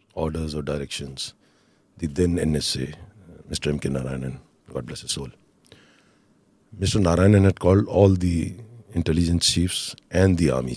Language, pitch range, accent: English, 70-90 Hz, Indian